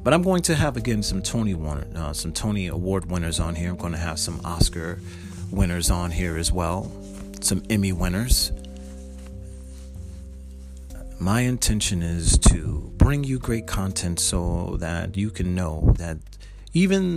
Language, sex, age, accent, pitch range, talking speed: English, male, 40-59, American, 85-120 Hz, 155 wpm